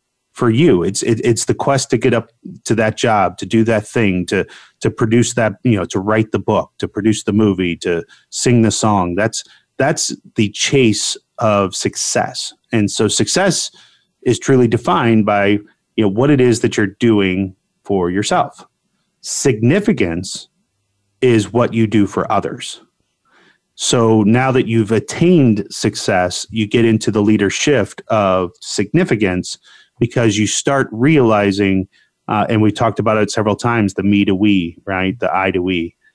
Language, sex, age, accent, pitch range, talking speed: English, male, 30-49, American, 100-120 Hz, 165 wpm